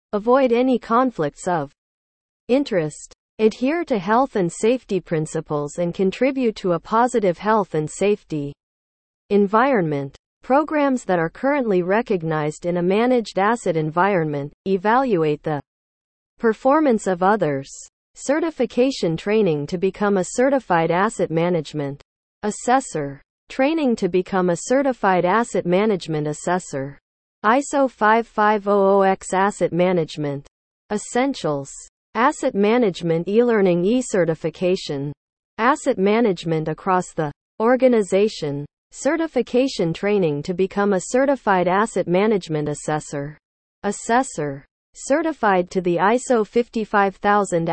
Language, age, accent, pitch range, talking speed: English, 40-59, American, 165-235 Hz, 100 wpm